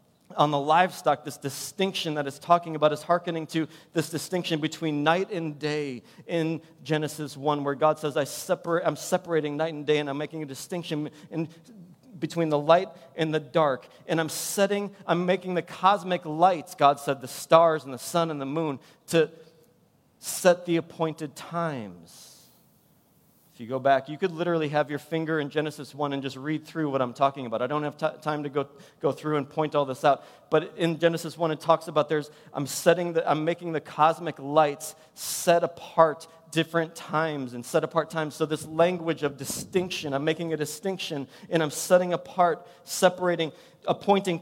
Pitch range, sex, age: 150-170 Hz, male, 40-59